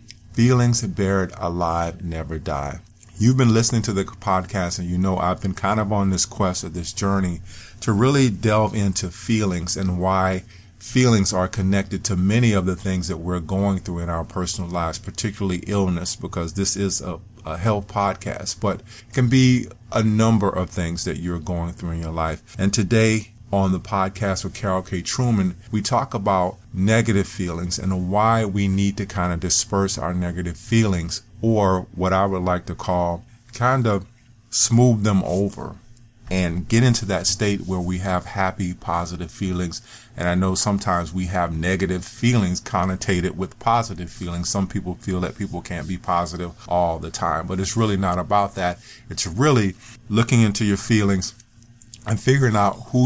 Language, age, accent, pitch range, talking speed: English, 40-59, American, 90-110 Hz, 175 wpm